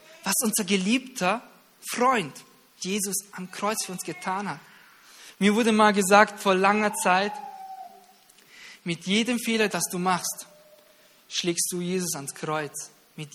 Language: German